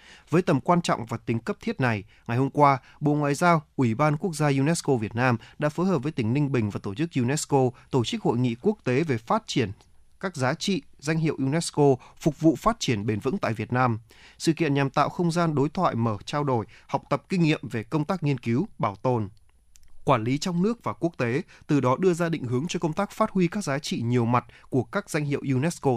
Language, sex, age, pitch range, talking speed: Vietnamese, male, 20-39, 120-160 Hz, 245 wpm